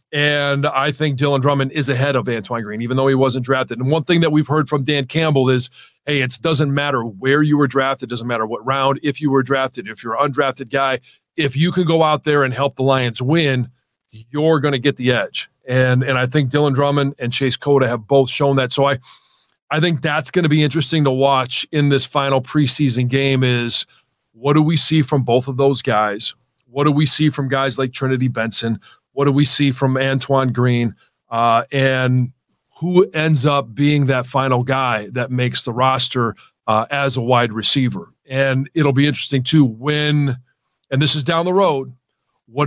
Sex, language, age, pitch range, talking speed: male, English, 40-59, 130-150 Hz, 210 wpm